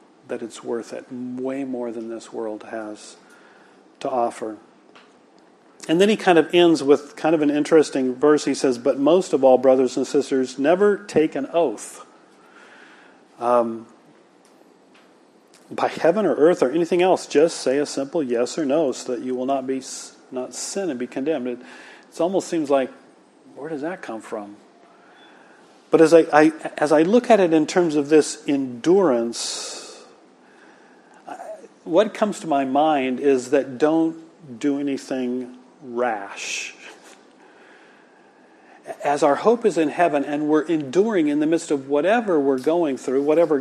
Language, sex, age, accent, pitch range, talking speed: English, male, 40-59, American, 125-165 Hz, 160 wpm